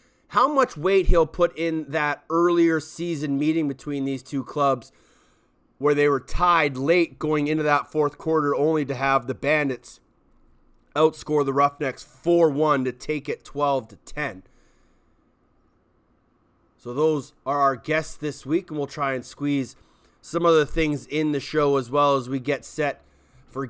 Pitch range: 135-160 Hz